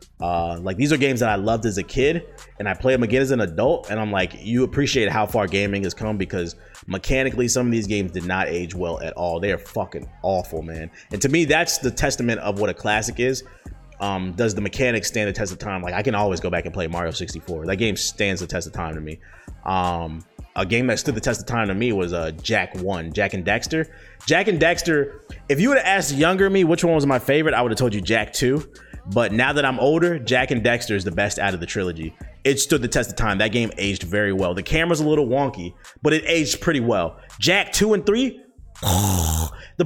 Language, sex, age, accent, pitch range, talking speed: English, male, 30-49, American, 90-130 Hz, 250 wpm